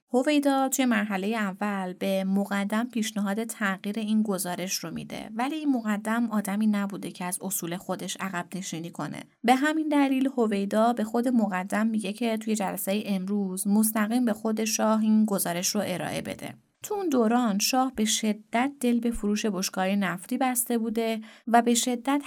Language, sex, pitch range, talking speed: Persian, female, 195-235 Hz, 165 wpm